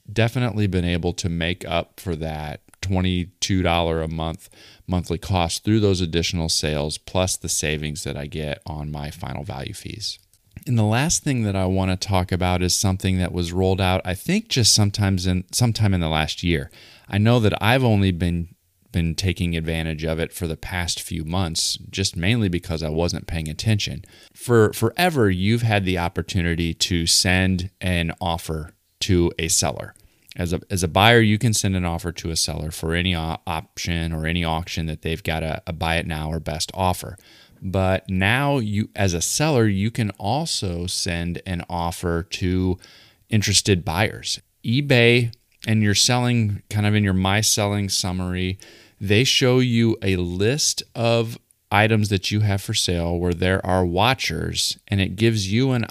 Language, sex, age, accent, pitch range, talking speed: English, male, 30-49, American, 85-105 Hz, 180 wpm